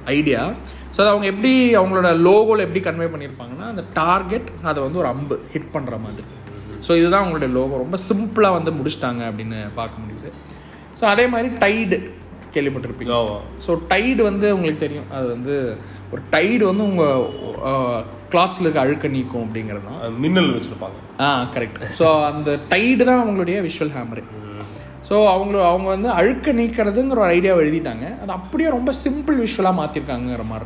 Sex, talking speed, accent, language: male, 150 wpm, native, Tamil